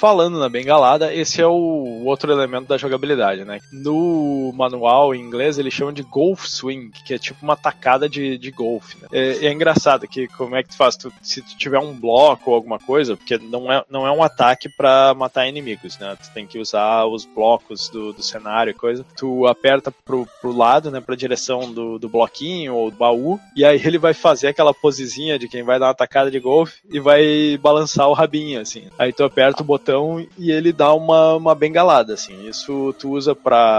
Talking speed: 215 wpm